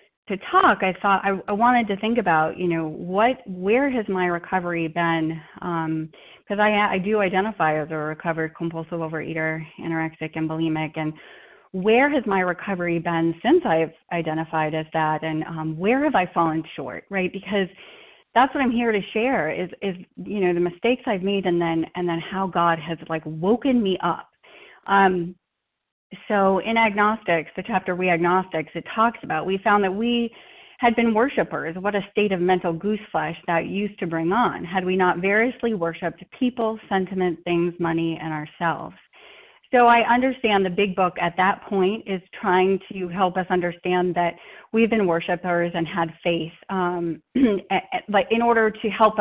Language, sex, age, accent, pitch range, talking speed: English, female, 30-49, American, 165-210 Hz, 175 wpm